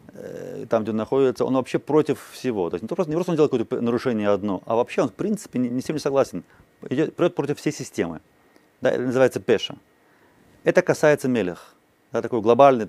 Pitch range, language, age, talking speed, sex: 105-150 Hz, Russian, 30-49, 195 wpm, male